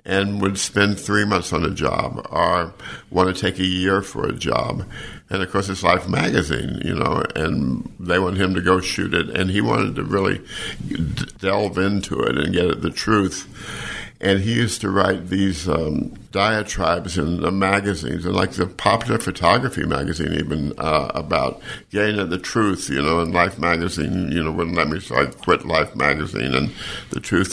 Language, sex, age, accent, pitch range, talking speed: English, male, 60-79, American, 90-105 Hz, 195 wpm